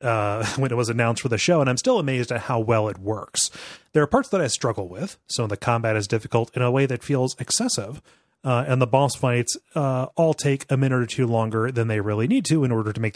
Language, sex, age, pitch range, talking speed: English, male, 30-49, 115-150 Hz, 260 wpm